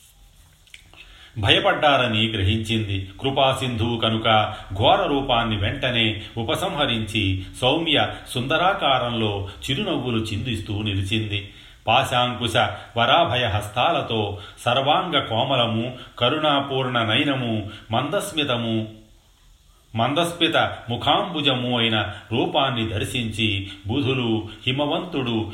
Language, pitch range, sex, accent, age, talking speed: Telugu, 105-125 Hz, male, native, 40-59, 65 wpm